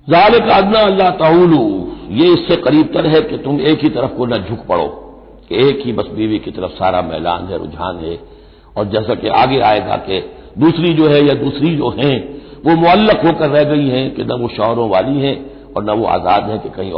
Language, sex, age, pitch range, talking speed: Hindi, male, 60-79, 140-190 Hz, 210 wpm